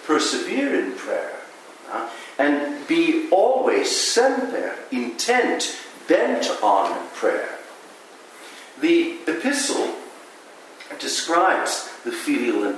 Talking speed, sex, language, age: 90 wpm, male, English, 50-69